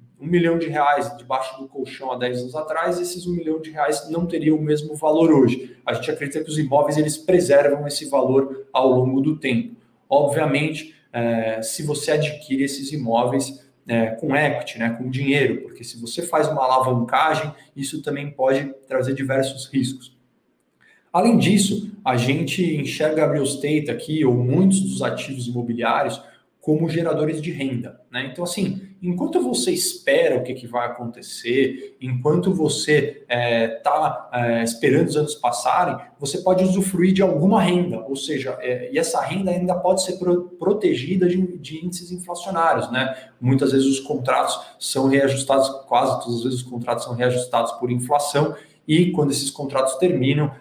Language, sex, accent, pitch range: Portuguese, male, Brazilian, 130-160 Hz